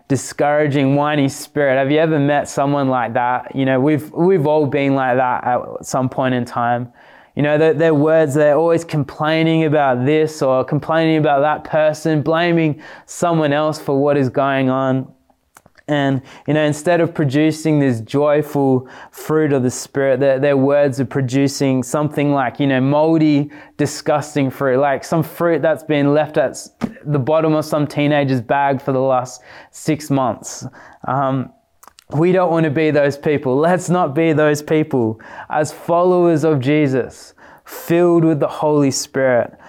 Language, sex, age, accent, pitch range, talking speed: English, male, 20-39, Australian, 135-155 Hz, 165 wpm